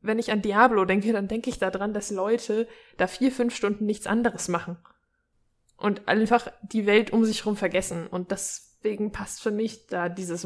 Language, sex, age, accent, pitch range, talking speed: German, female, 20-39, German, 190-235 Hz, 190 wpm